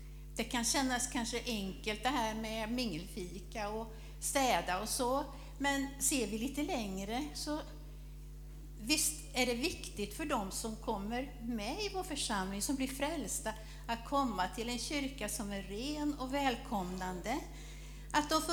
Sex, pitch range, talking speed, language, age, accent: female, 210-265 Hz, 150 wpm, Swedish, 60-79, native